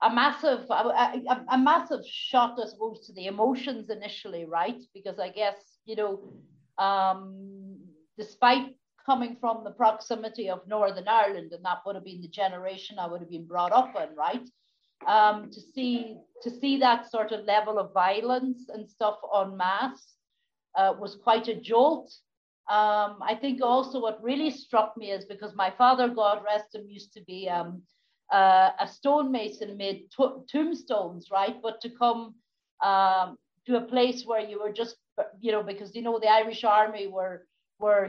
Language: English